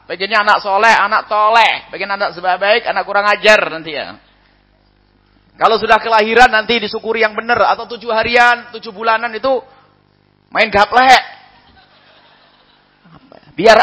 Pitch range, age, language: 150-225 Hz, 30-49, English